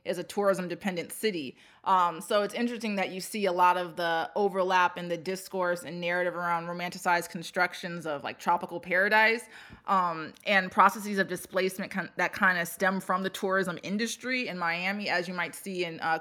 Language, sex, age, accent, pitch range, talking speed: English, female, 20-39, American, 175-200 Hz, 185 wpm